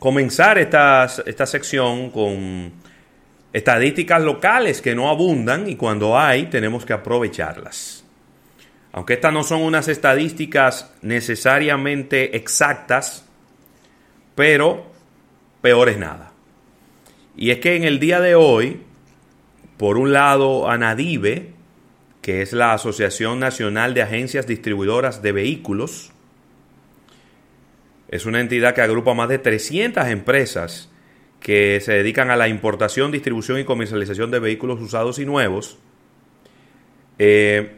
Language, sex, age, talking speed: Spanish, male, 30-49, 120 wpm